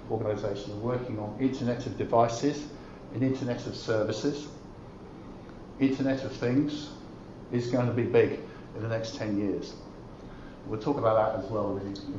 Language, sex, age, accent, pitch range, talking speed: English, male, 50-69, British, 120-145 Hz, 155 wpm